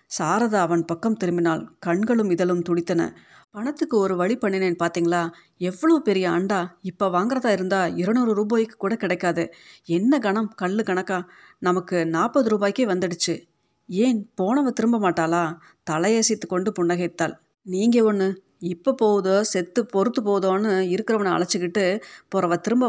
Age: 30-49